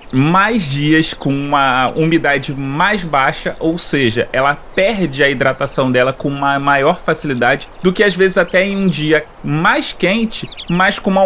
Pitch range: 150-220 Hz